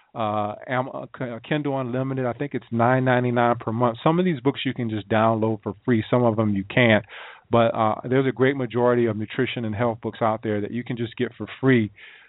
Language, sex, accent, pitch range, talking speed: English, male, American, 105-125 Hz, 215 wpm